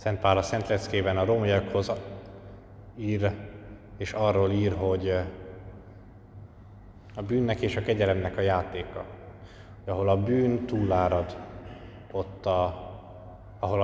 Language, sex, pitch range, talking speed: Hungarian, male, 95-110 Hz, 100 wpm